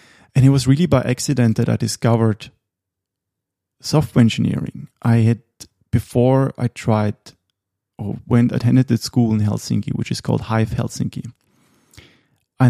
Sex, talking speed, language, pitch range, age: male, 135 wpm, English, 115-130 Hz, 30-49